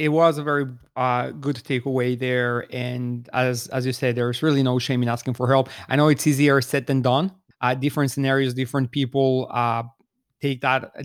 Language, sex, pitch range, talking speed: English, male, 125-145 Hz, 200 wpm